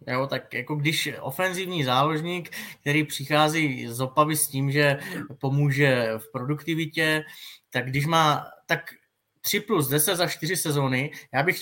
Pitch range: 130-155 Hz